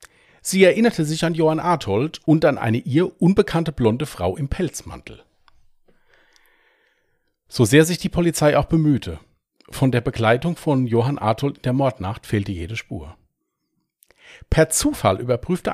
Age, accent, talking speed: 40-59, German, 140 wpm